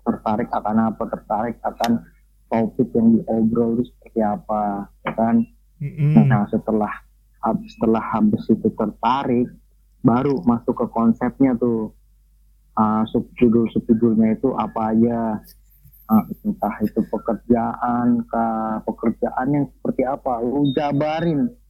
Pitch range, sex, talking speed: 115-155 Hz, male, 110 wpm